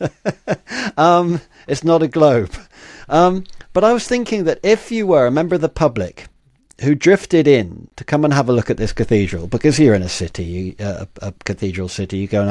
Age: 50-69